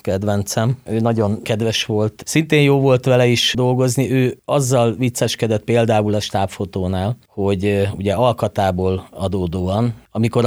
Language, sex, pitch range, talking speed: Hungarian, male, 95-115 Hz, 125 wpm